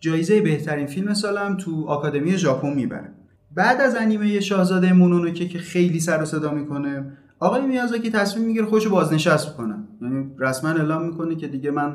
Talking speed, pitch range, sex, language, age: 170 wpm, 135-185 Hz, male, Persian, 30-49